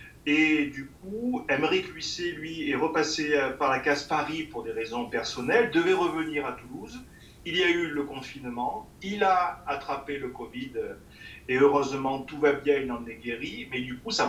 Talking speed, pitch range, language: 185 wpm, 135-170 Hz, French